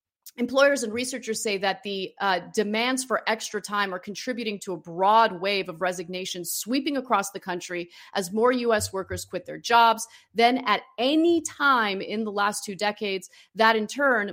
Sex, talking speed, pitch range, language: female, 175 wpm, 190-255 Hz, English